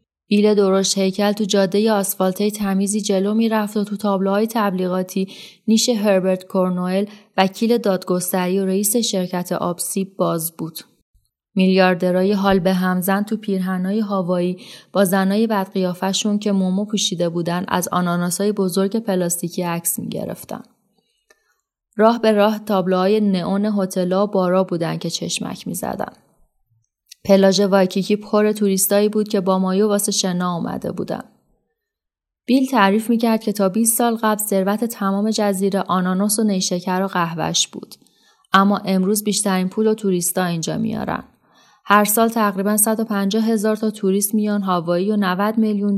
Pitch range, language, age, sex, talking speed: 185-210 Hz, Persian, 20-39, female, 140 wpm